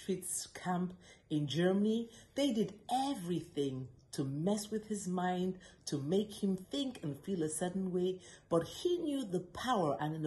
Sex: female